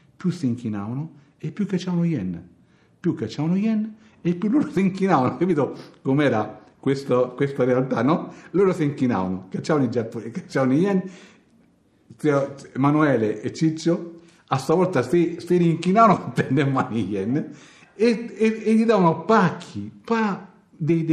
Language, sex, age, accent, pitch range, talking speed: Italian, male, 60-79, native, 120-175 Hz, 135 wpm